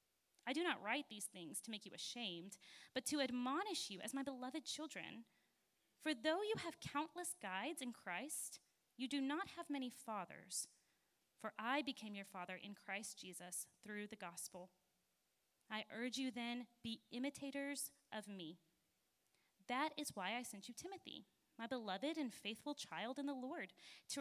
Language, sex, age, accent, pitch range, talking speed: English, female, 20-39, American, 200-275 Hz, 165 wpm